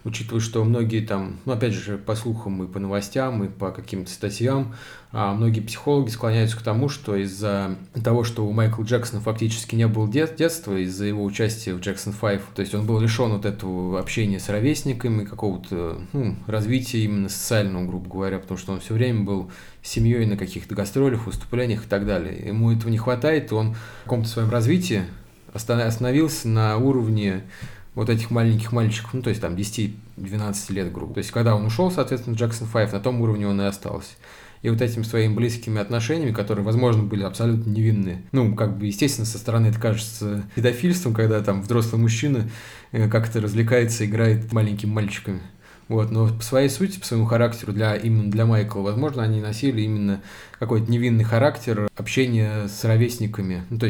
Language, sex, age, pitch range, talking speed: Russian, male, 20-39, 100-115 Hz, 180 wpm